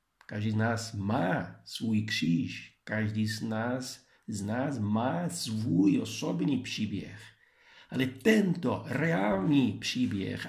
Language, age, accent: Czech, 50-69, Italian